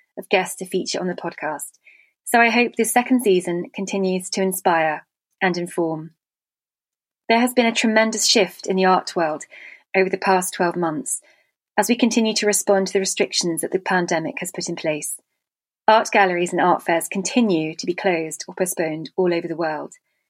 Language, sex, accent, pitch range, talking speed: English, female, British, 175-205 Hz, 185 wpm